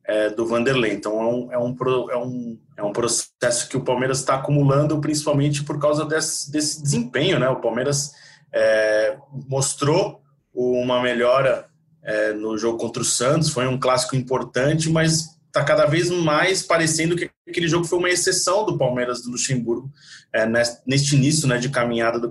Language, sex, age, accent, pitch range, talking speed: Portuguese, male, 20-39, Brazilian, 120-145 Hz, 165 wpm